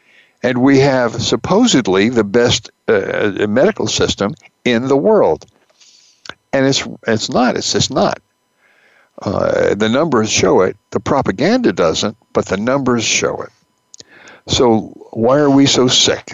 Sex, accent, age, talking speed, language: male, American, 60-79, 140 wpm, English